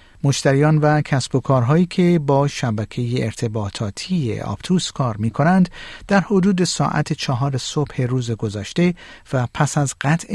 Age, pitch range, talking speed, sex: 50-69, 120-165 Hz, 135 wpm, male